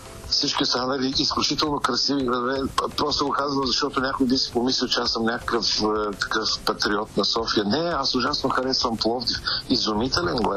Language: Bulgarian